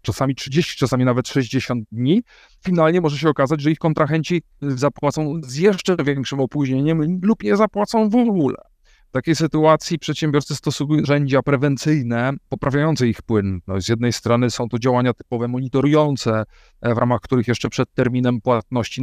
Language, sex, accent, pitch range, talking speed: Polish, male, native, 120-155 Hz, 150 wpm